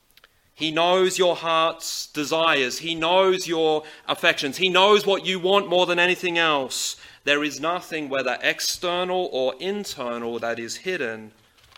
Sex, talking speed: male, 145 wpm